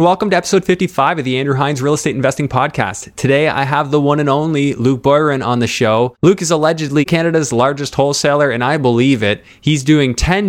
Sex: male